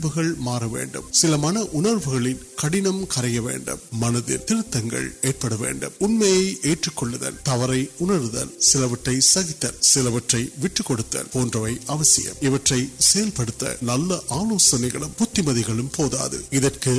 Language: Urdu